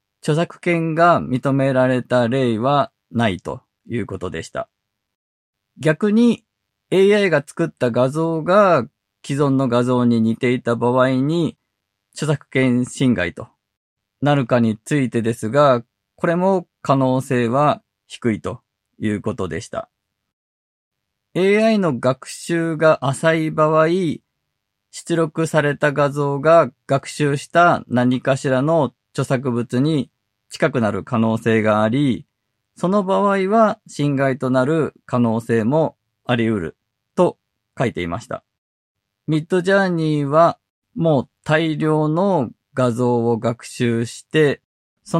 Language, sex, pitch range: Japanese, male, 115-155 Hz